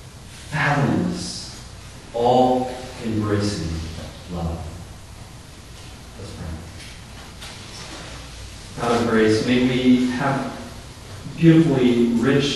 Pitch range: 95-125 Hz